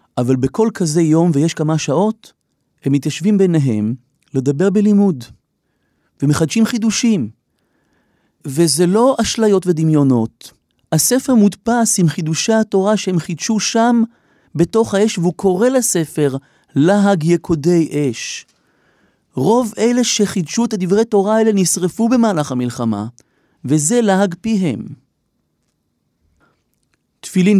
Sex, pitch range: male, 145-195 Hz